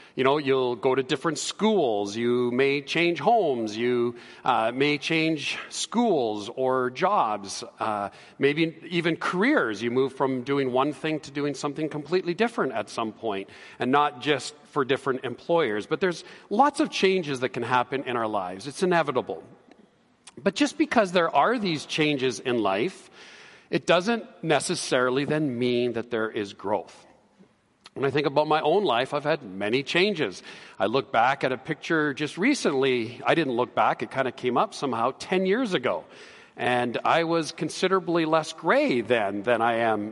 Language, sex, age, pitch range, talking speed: English, male, 40-59, 120-170 Hz, 170 wpm